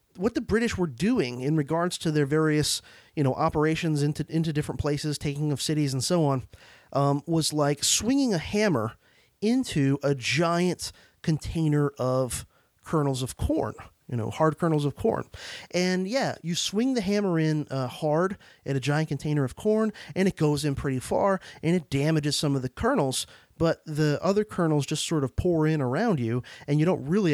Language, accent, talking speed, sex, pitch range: English, American, 190 wpm, male, 130-165 Hz